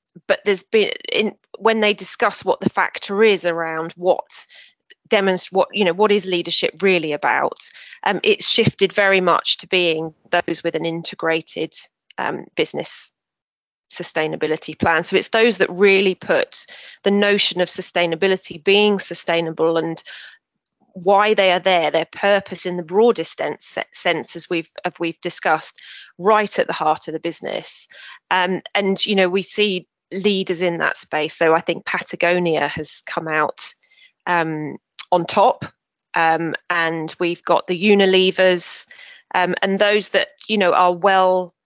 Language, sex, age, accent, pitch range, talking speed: English, female, 30-49, British, 165-200 Hz, 155 wpm